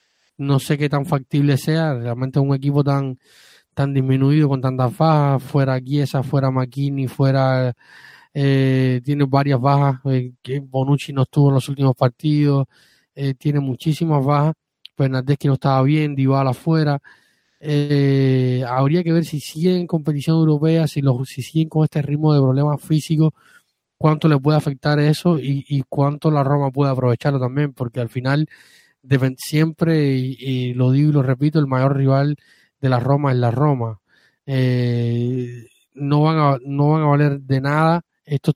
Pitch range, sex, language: 130-150 Hz, male, Spanish